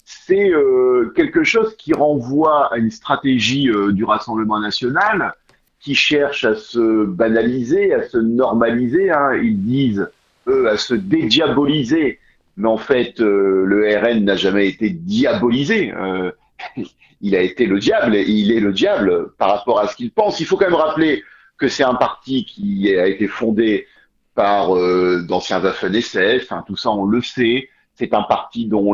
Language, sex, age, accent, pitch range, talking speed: French, male, 50-69, French, 105-160 Hz, 170 wpm